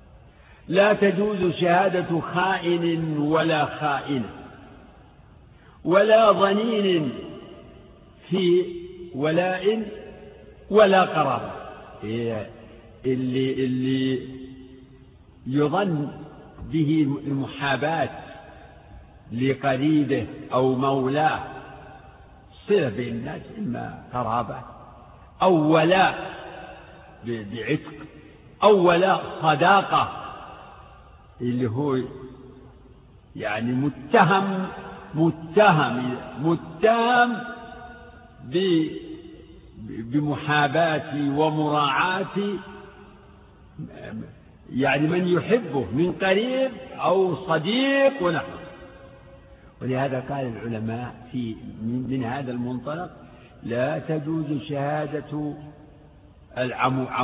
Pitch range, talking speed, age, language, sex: 130-180 Hz, 65 wpm, 60-79, Arabic, male